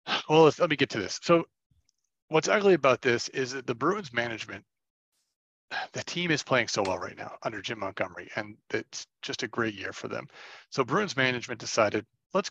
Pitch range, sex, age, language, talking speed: 105-140 Hz, male, 40-59, English, 195 wpm